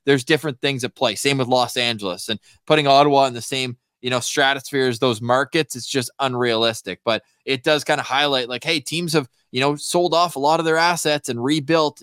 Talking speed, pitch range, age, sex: 225 wpm, 125-150 Hz, 20-39, male